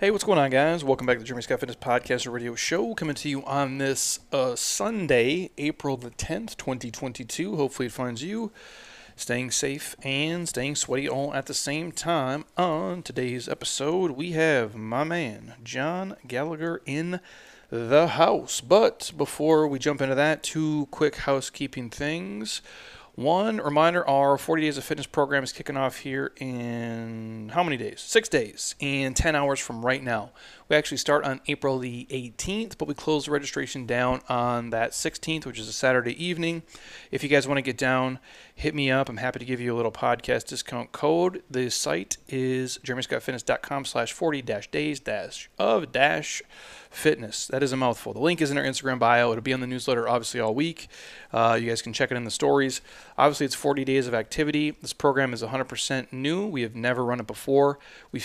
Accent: American